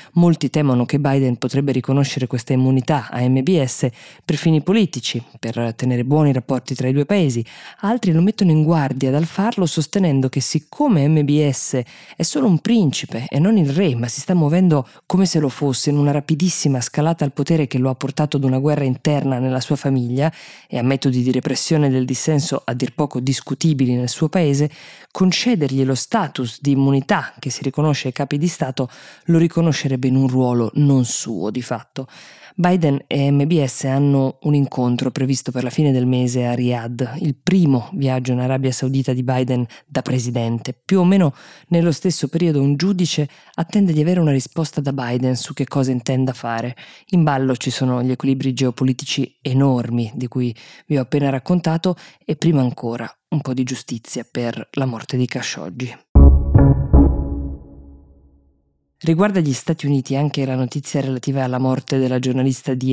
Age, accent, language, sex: 20-39, native, Italian, female